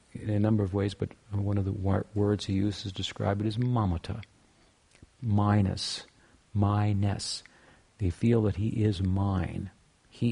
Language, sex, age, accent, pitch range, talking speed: English, male, 50-69, American, 95-110 Hz, 150 wpm